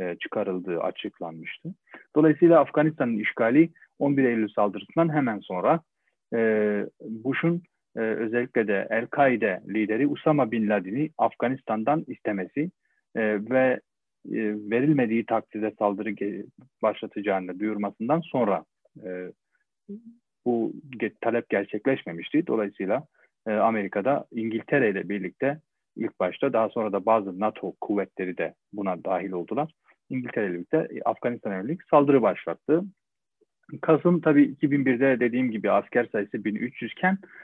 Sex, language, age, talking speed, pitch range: male, Turkish, 40-59, 110 wpm, 105-150 Hz